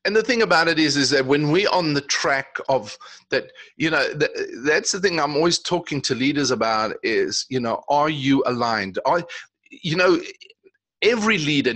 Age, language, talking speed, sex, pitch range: 40-59, English, 195 wpm, male, 130-175 Hz